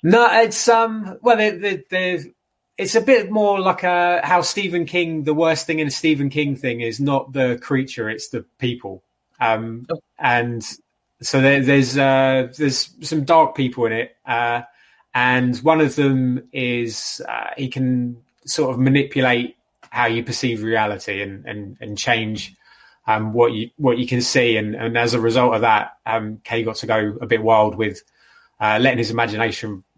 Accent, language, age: British, English, 20-39